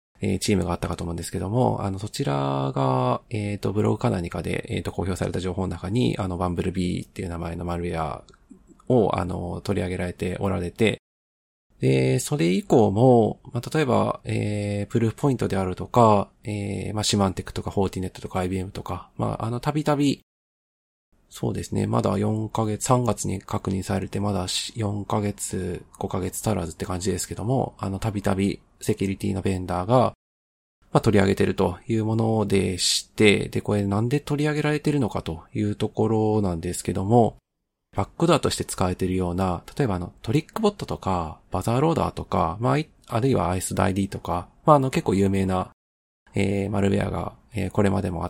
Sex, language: male, Japanese